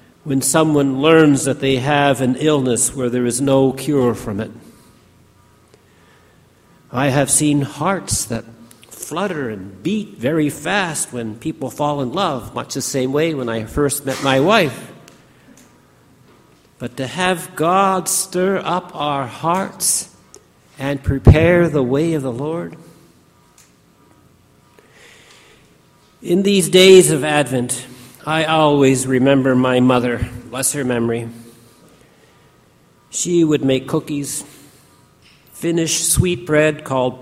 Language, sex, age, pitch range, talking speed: English, male, 50-69, 125-160 Hz, 120 wpm